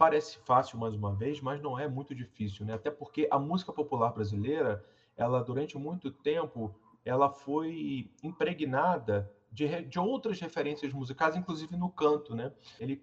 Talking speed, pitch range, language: 155 wpm, 115-170 Hz, Portuguese